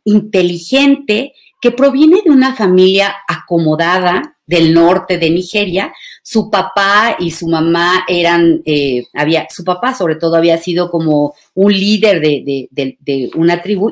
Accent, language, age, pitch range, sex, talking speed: Mexican, Spanish, 40-59, 165-210 Hz, female, 145 wpm